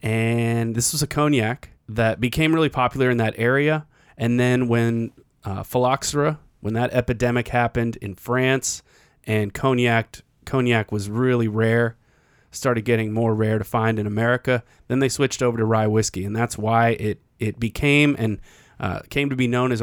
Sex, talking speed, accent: male, 170 wpm, American